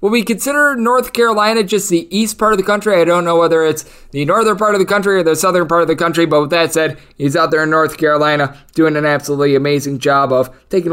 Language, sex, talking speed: English, male, 260 wpm